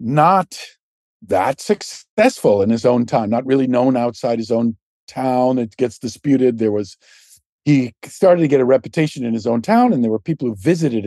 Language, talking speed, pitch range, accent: English, 190 wpm, 115-145 Hz, American